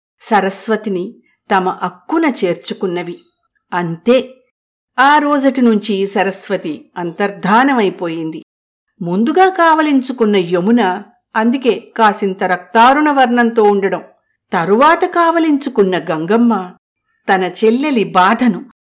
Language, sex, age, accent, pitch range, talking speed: Telugu, female, 50-69, native, 180-245 Hz, 75 wpm